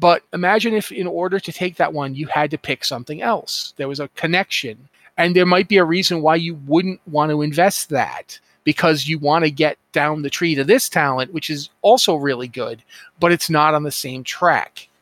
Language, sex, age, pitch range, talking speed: English, male, 40-59, 140-170 Hz, 220 wpm